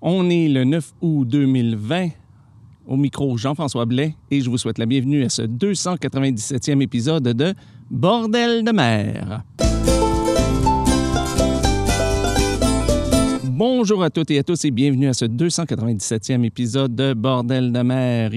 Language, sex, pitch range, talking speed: French, male, 115-150 Hz, 130 wpm